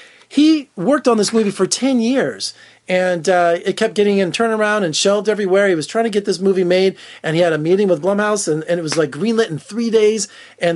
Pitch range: 140-205 Hz